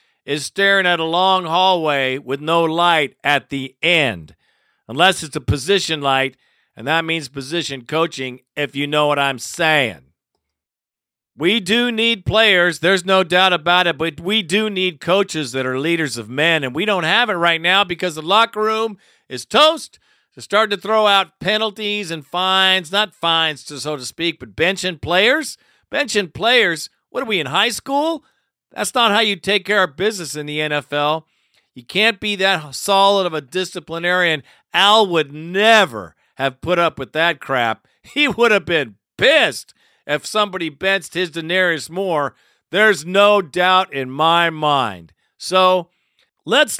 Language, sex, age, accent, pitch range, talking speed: English, male, 50-69, American, 155-205 Hz, 170 wpm